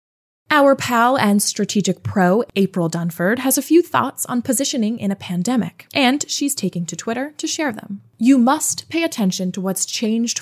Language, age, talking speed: English, 20-39, 180 wpm